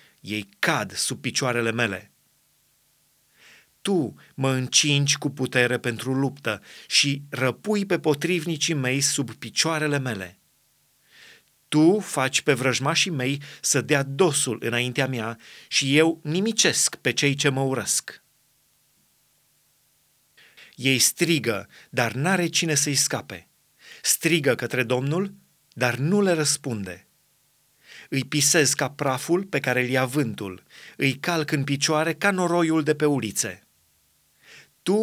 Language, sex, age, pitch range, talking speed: Romanian, male, 30-49, 125-160 Hz, 120 wpm